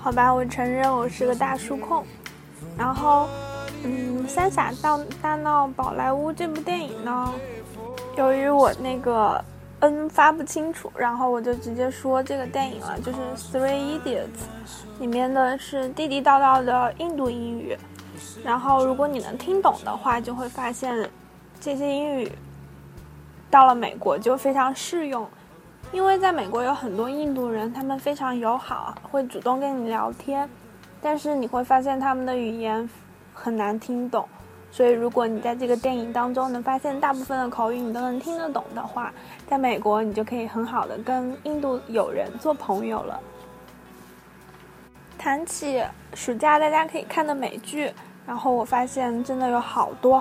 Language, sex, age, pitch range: Chinese, female, 20-39, 235-280 Hz